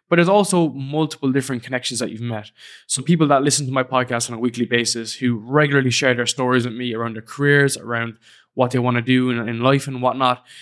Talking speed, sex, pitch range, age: 230 wpm, male, 120-140 Hz, 20-39